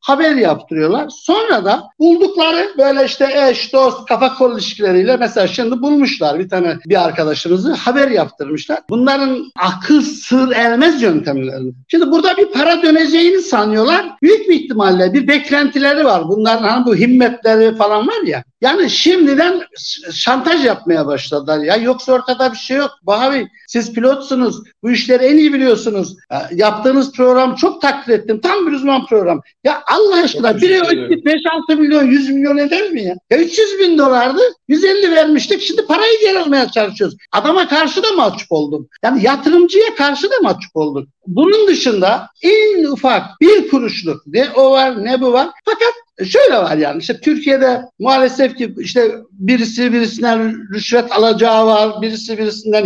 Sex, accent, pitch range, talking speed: male, native, 225-315 Hz, 155 wpm